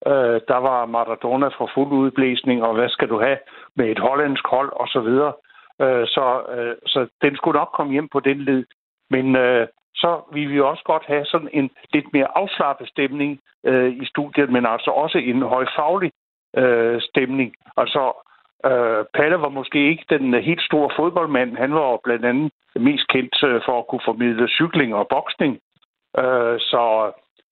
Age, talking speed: 60-79, 180 wpm